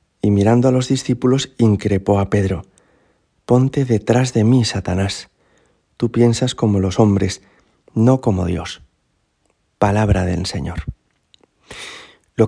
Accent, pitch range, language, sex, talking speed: Spanish, 95-130 Hz, Spanish, male, 120 wpm